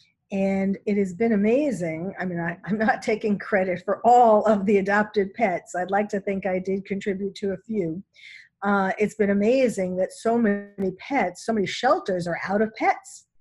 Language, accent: English, American